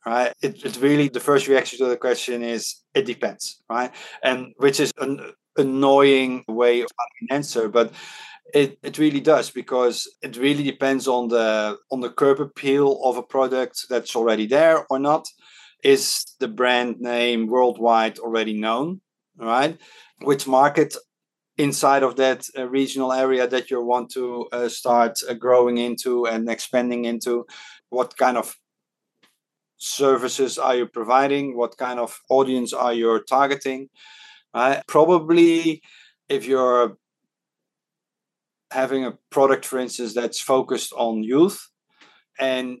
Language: English